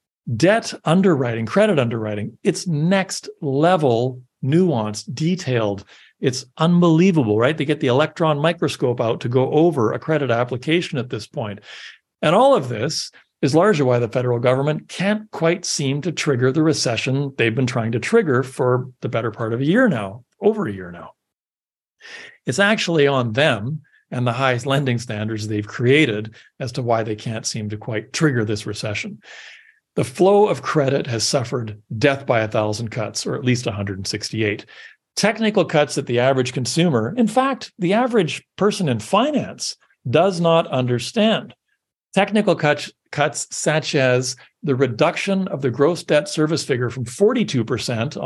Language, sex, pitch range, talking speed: English, male, 120-170 Hz, 160 wpm